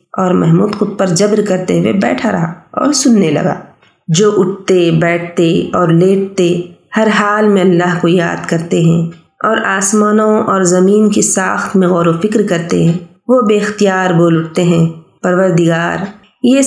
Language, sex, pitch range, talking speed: Urdu, female, 175-235 Hz, 160 wpm